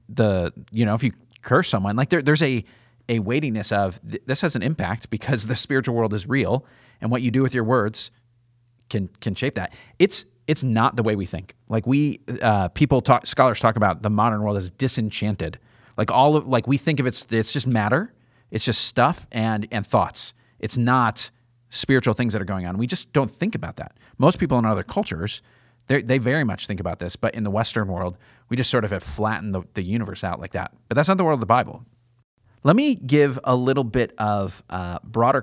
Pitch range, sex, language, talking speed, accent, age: 110-130 Hz, male, English, 225 wpm, American, 30-49